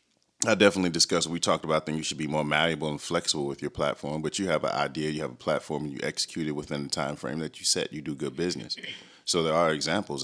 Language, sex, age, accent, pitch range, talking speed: English, male, 30-49, American, 75-85 Hz, 265 wpm